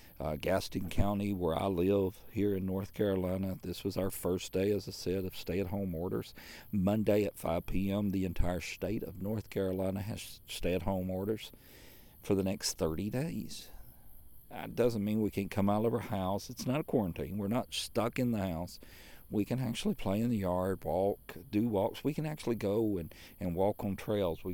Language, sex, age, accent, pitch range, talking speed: English, male, 50-69, American, 90-110 Hz, 195 wpm